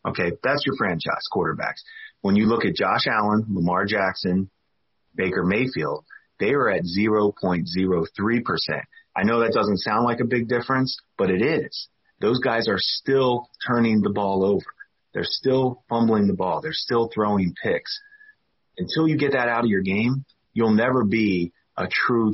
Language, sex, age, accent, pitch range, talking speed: English, male, 30-49, American, 95-125 Hz, 165 wpm